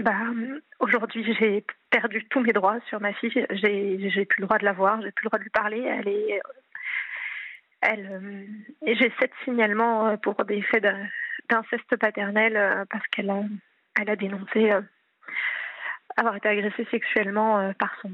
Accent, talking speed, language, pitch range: French, 160 wpm, French, 205-230 Hz